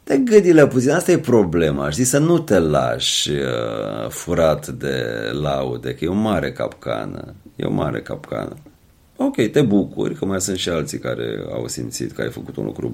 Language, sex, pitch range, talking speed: Romanian, male, 75-125 Hz, 185 wpm